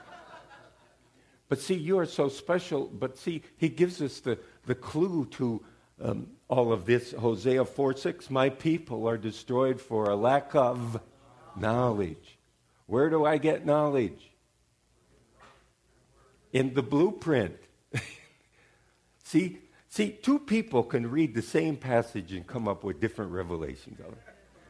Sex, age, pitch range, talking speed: male, 60-79, 115-155 Hz, 130 wpm